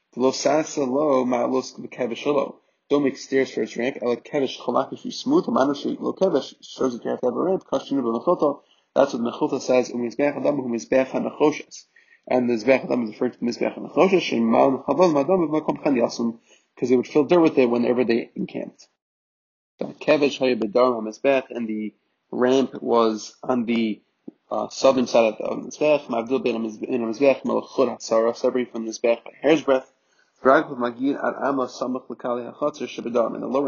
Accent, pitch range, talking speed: Canadian, 120-140 Hz, 105 wpm